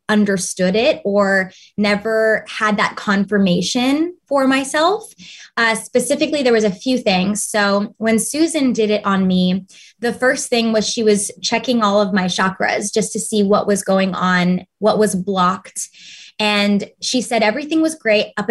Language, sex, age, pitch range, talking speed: English, female, 20-39, 190-230 Hz, 165 wpm